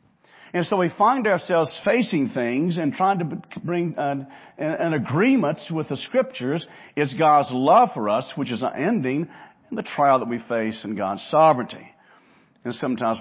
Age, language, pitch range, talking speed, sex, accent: 50-69, English, 140-195 Hz, 170 wpm, male, American